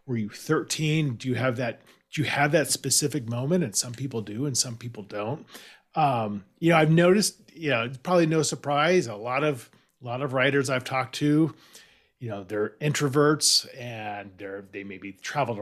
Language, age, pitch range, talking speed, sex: English, 40-59, 115-150 Hz, 195 wpm, male